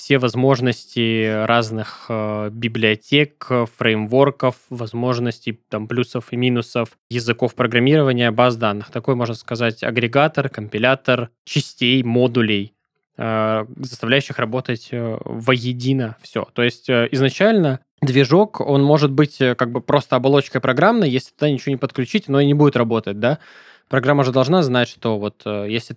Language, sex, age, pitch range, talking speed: Russian, male, 20-39, 115-135 Hz, 125 wpm